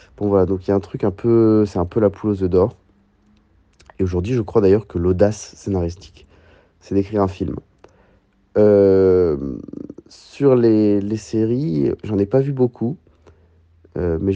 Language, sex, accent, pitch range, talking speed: French, male, French, 95-115 Hz, 175 wpm